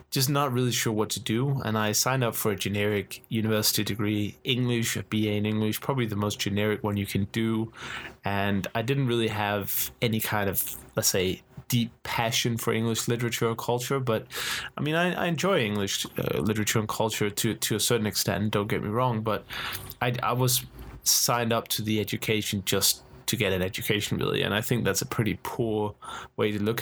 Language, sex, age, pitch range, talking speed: English, male, 20-39, 105-120 Hz, 205 wpm